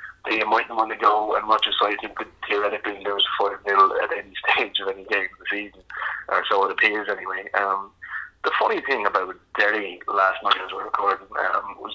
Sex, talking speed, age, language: male, 225 wpm, 20-39, English